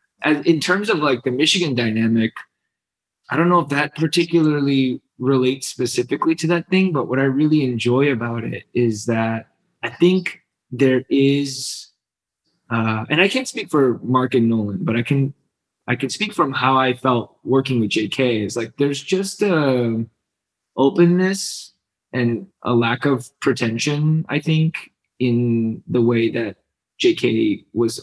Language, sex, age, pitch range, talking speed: English, male, 20-39, 115-145 Hz, 160 wpm